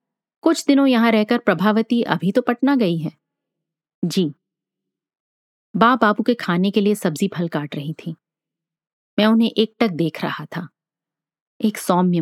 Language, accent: Hindi, native